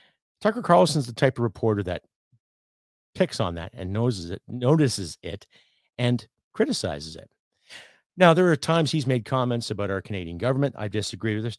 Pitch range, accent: 100-135 Hz, American